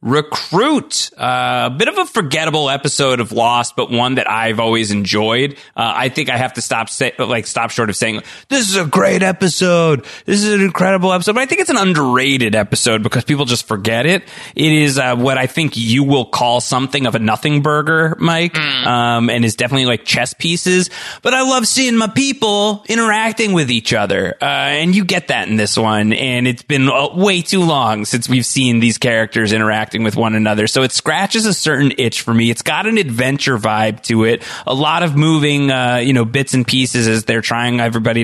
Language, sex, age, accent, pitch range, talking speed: English, male, 30-49, American, 115-150 Hz, 215 wpm